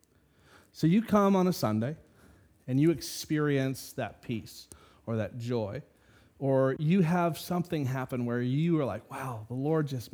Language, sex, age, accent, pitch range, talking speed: English, male, 30-49, American, 115-150 Hz, 160 wpm